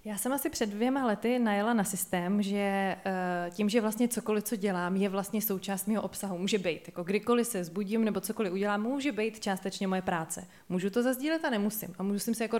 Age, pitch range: 20-39, 195-230 Hz